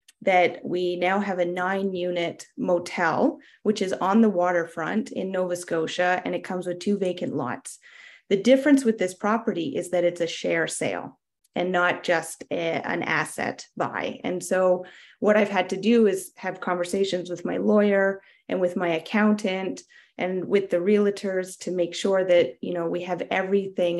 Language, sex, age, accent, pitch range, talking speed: English, female, 30-49, American, 175-200 Hz, 175 wpm